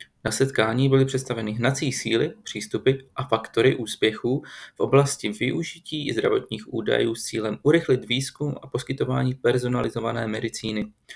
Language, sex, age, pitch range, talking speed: Czech, male, 30-49, 110-135 Hz, 130 wpm